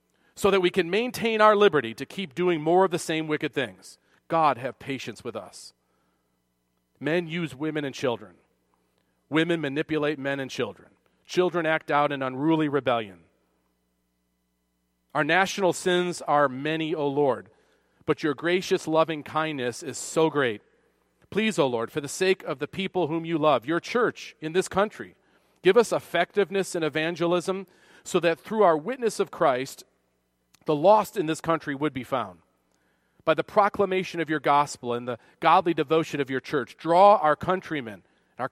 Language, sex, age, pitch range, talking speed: English, male, 40-59, 125-175 Hz, 165 wpm